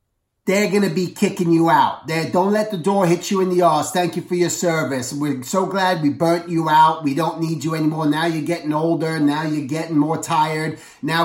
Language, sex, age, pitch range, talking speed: English, male, 30-49, 160-215 Hz, 230 wpm